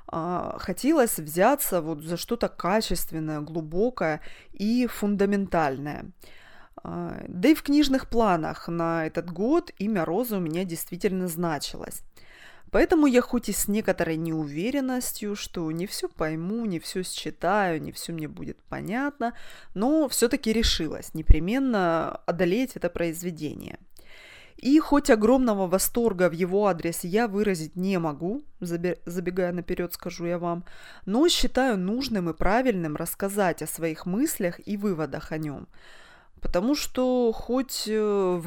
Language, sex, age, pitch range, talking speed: Russian, female, 20-39, 170-230 Hz, 130 wpm